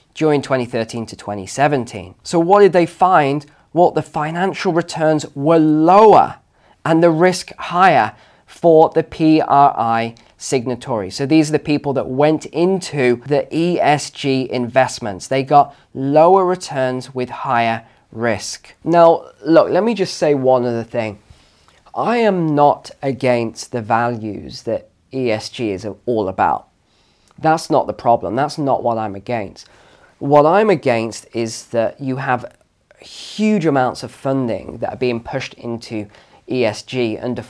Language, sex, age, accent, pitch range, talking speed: English, male, 20-39, British, 120-155 Hz, 140 wpm